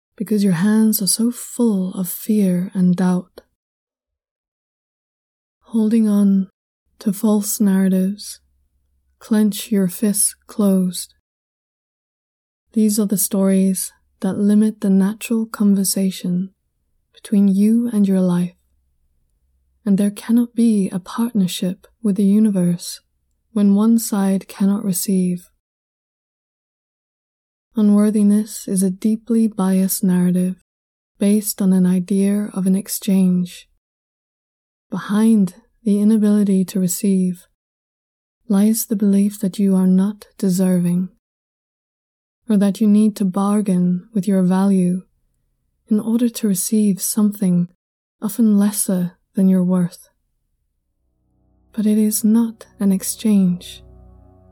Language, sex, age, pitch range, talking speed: English, female, 20-39, 185-215 Hz, 110 wpm